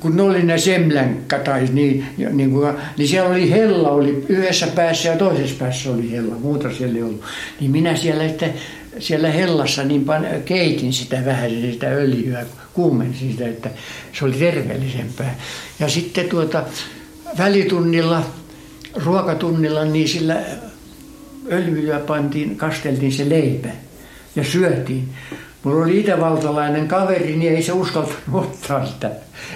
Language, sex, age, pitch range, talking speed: Finnish, male, 60-79, 135-175 Hz, 135 wpm